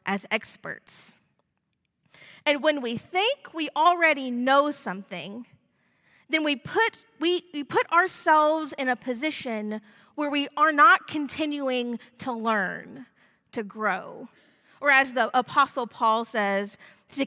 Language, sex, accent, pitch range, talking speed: English, female, American, 205-285 Hz, 125 wpm